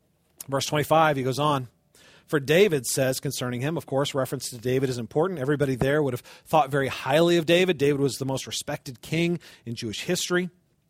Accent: American